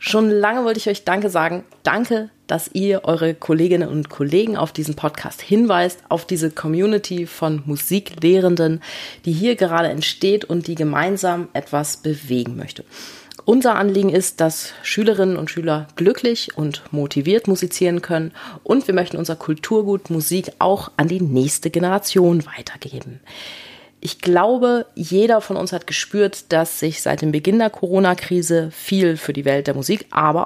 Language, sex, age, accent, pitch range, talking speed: German, female, 30-49, German, 160-200 Hz, 155 wpm